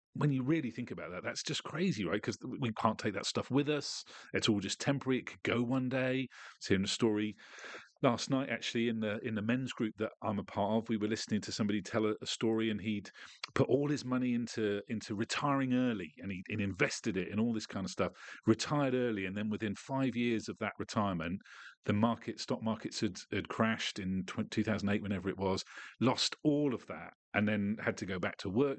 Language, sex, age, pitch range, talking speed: English, male, 40-59, 105-125 Hz, 225 wpm